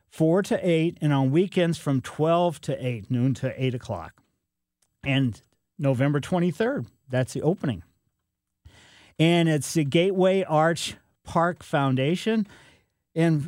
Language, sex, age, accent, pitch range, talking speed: English, male, 50-69, American, 130-170 Hz, 125 wpm